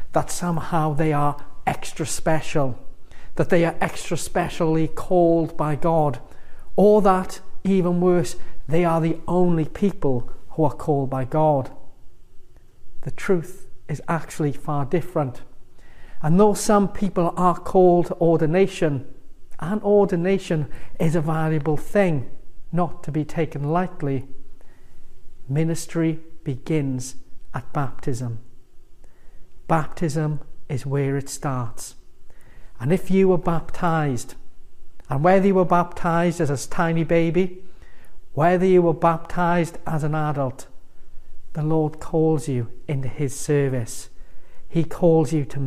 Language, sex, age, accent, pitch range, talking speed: English, male, 40-59, British, 135-170 Hz, 125 wpm